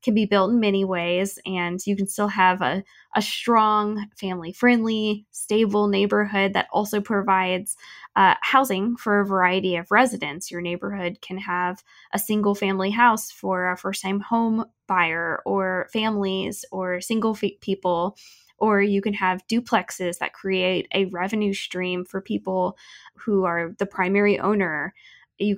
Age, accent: 10-29, American